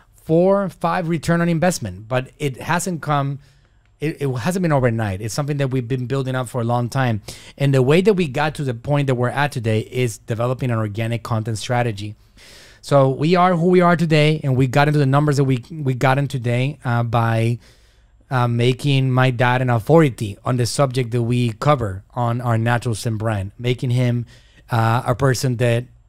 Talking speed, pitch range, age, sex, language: 200 wpm, 120-145 Hz, 30-49, male, English